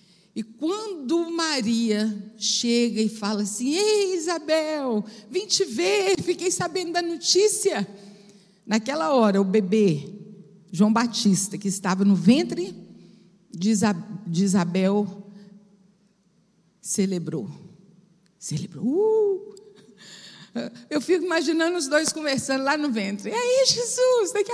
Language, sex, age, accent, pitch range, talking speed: Portuguese, female, 50-69, Brazilian, 205-335 Hz, 110 wpm